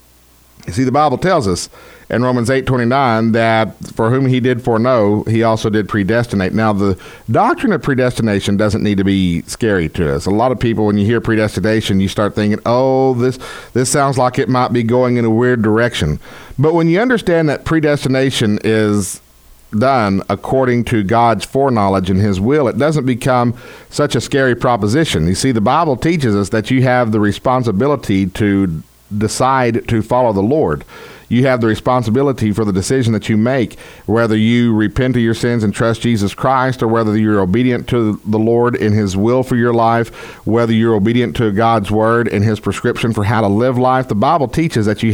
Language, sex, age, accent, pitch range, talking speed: English, male, 50-69, American, 105-130 Hz, 195 wpm